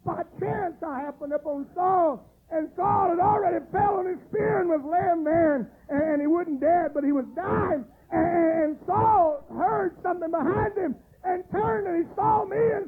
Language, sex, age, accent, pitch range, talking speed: English, male, 50-69, American, 210-350 Hz, 200 wpm